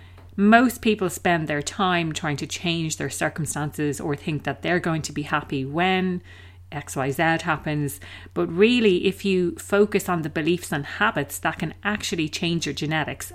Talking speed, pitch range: 165 wpm, 130-175 Hz